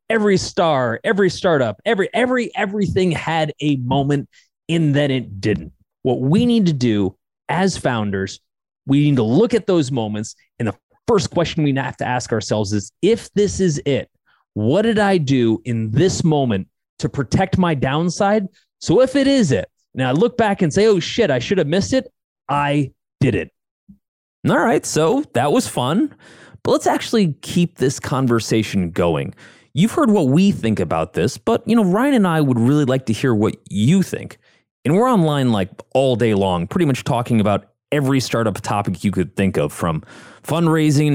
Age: 30-49